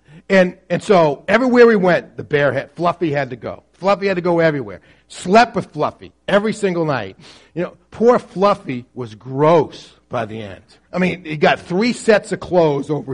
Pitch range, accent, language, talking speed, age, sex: 150-220 Hz, American, English, 190 wpm, 40-59, male